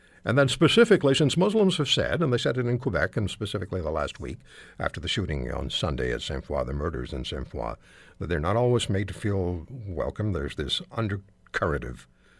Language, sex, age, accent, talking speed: English, male, 60-79, American, 195 wpm